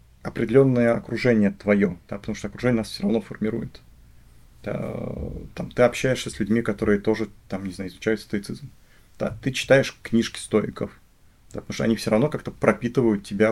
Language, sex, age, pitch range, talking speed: Russian, male, 30-49, 100-120 Hz, 170 wpm